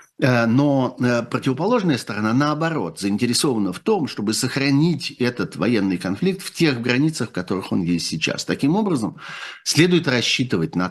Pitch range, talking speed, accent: 100-130 Hz, 140 wpm, native